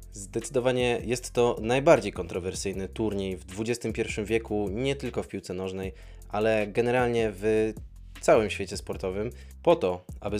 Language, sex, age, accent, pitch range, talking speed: Polish, male, 20-39, native, 100-125 Hz, 135 wpm